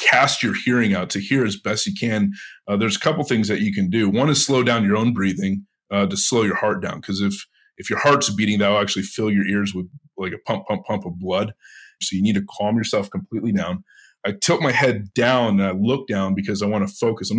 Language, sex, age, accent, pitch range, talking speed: English, male, 30-49, American, 100-130 Hz, 255 wpm